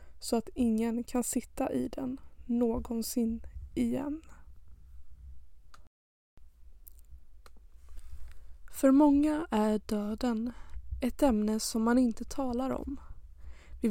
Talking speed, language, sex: 90 wpm, Swedish, female